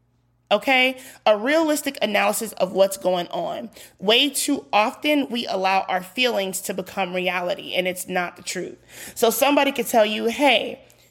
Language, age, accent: English, 20-39, American